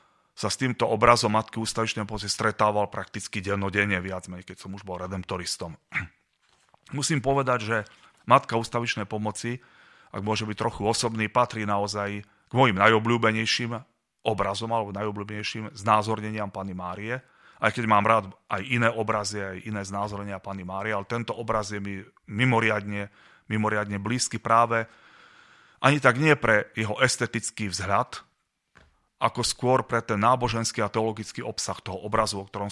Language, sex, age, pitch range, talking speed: Slovak, male, 30-49, 100-120 Hz, 145 wpm